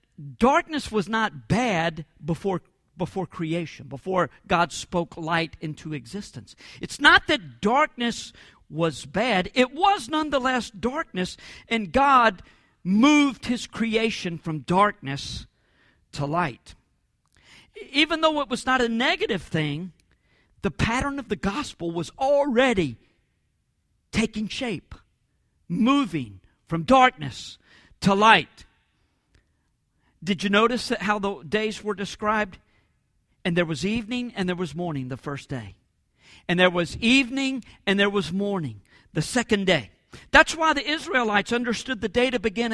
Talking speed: 130 wpm